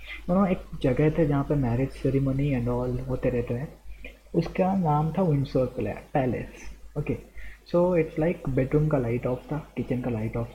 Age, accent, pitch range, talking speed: 20-39, native, 130-165 Hz, 175 wpm